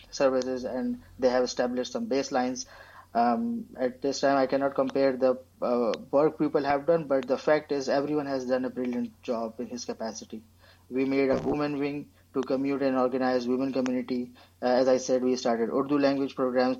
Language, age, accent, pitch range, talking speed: English, 20-39, Indian, 125-135 Hz, 190 wpm